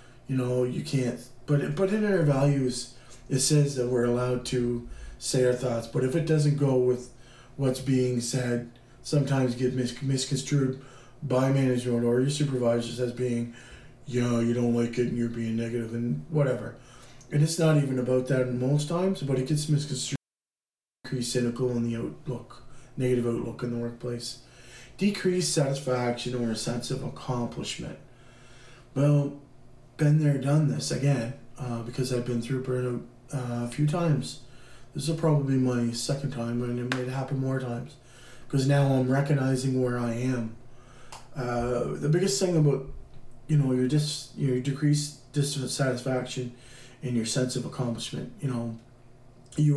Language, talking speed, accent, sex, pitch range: English, 165 wpm, American, male, 120-135 Hz